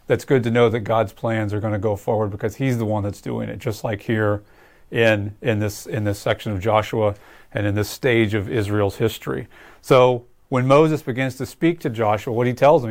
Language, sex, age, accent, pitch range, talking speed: English, male, 30-49, American, 110-130 Hz, 230 wpm